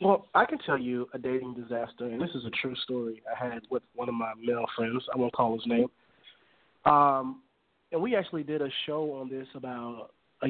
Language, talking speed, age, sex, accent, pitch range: English, 215 wpm, 30-49, male, American, 125-150 Hz